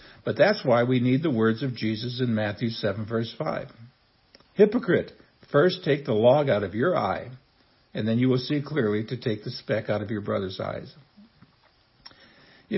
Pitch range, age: 110-135 Hz, 60-79